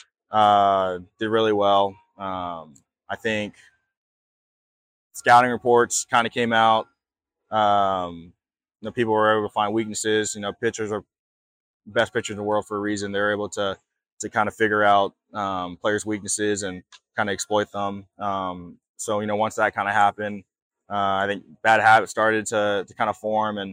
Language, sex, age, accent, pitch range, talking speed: English, male, 20-39, American, 100-110 Hz, 180 wpm